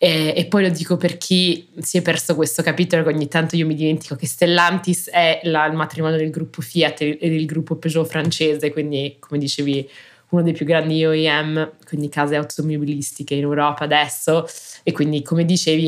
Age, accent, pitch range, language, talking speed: 20-39, native, 145-170 Hz, Italian, 180 wpm